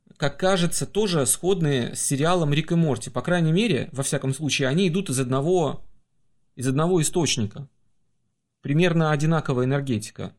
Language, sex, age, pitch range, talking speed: Russian, male, 30-49, 125-185 Hz, 145 wpm